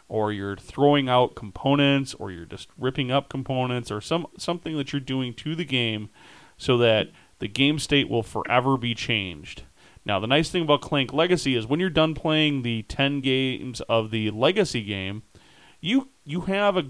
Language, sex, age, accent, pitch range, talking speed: English, male, 30-49, American, 115-150 Hz, 185 wpm